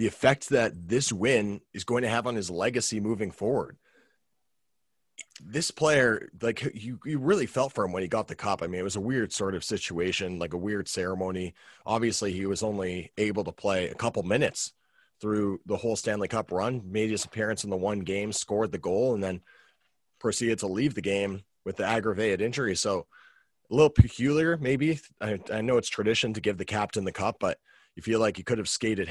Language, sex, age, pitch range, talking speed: English, male, 30-49, 95-115 Hz, 210 wpm